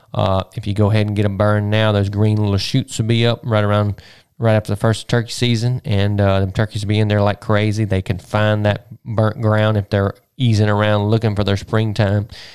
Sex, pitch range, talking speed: male, 100-115 Hz, 235 wpm